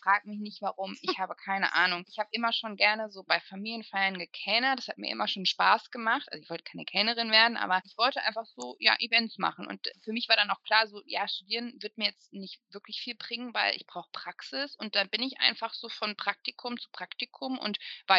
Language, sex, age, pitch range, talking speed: German, female, 20-39, 180-225 Hz, 235 wpm